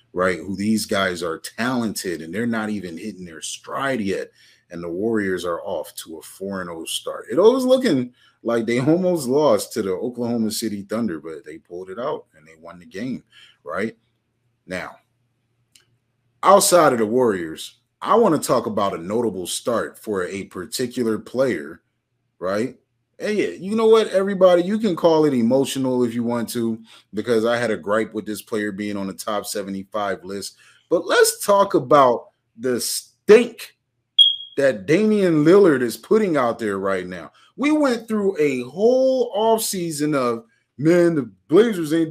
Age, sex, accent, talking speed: 30-49, male, American, 170 wpm